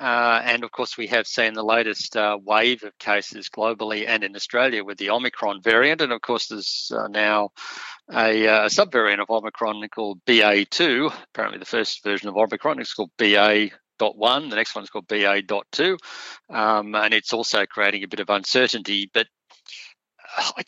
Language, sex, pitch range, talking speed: English, male, 105-115 Hz, 170 wpm